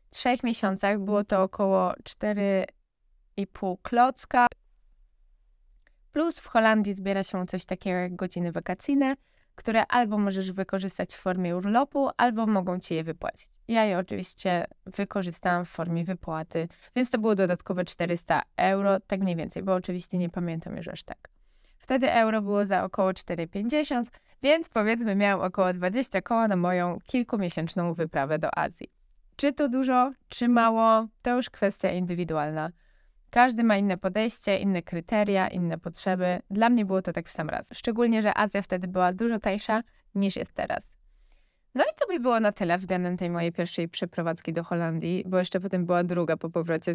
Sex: female